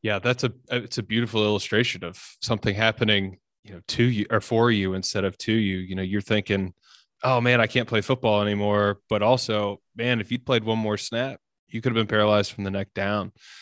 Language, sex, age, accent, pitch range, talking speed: English, male, 20-39, American, 105-120 Hz, 220 wpm